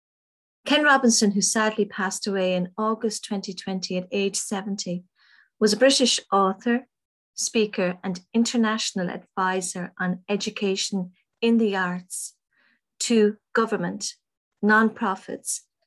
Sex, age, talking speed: female, 40-59, 105 wpm